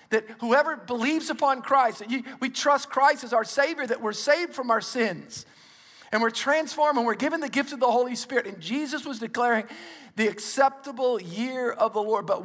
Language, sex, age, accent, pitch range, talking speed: English, male, 50-69, American, 185-235 Hz, 200 wpm